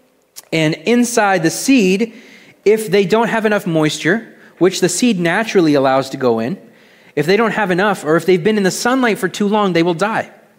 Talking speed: 205 wpm